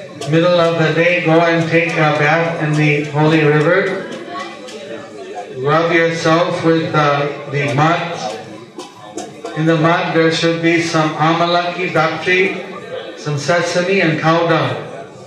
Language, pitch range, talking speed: English, 160-180 Hz, 125 wpm